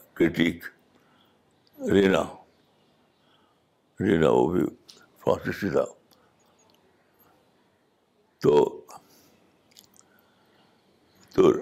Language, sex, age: Urdu, male, 60-79